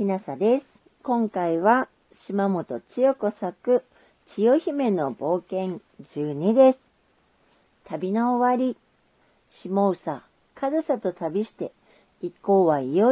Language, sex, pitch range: Japanese, female, 175-245 Hz